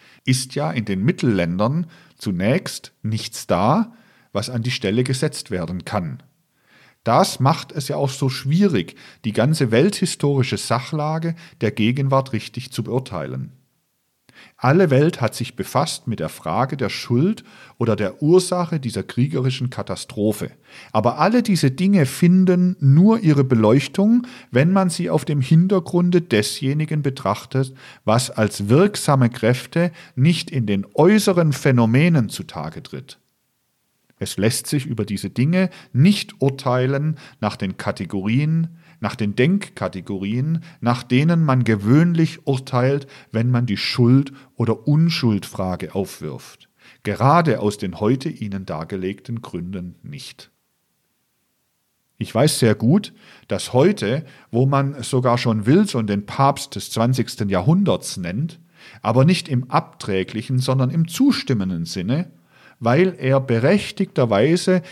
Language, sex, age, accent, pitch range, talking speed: German, male, 50-69, German, 110-160 Hz, 125 wpm